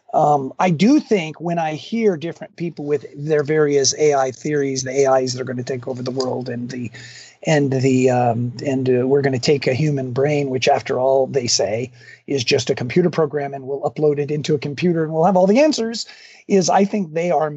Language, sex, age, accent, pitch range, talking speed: English, male, 50-69, American, 130-155 Hz, 225 wpm